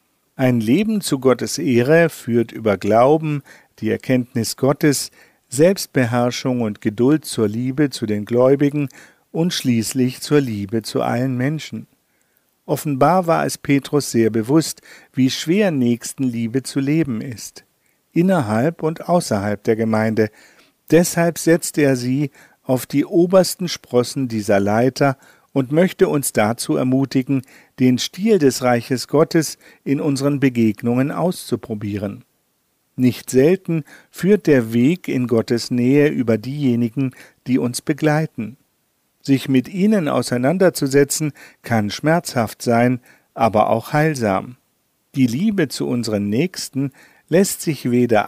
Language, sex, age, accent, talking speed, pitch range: German, male, 50-69, German, 120 wpm, 120-155 Hz